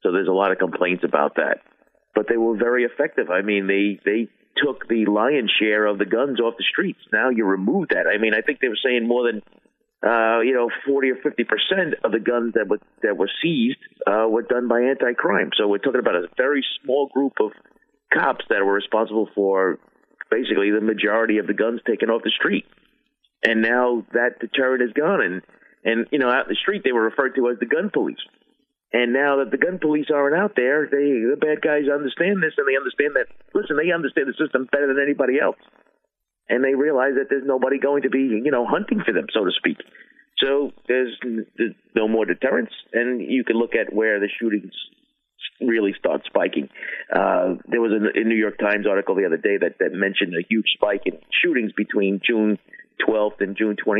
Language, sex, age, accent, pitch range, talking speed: English, male, 50-69, American, 110-140 Hz, 210 wpm